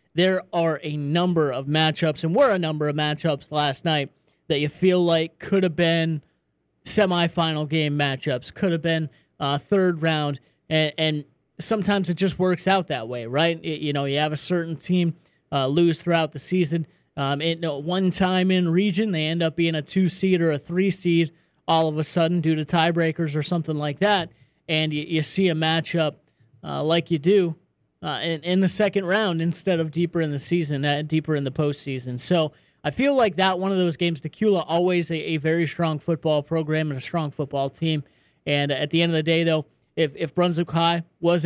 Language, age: English, 30-49